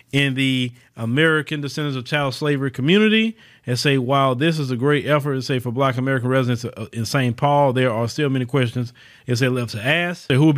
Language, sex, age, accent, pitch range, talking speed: English, male, 30-49, American, 120-140 Hz, 210 wpm